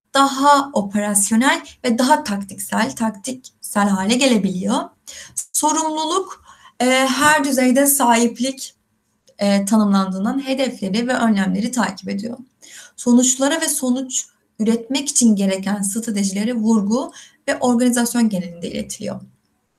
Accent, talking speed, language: native, 95 wpm, Turkish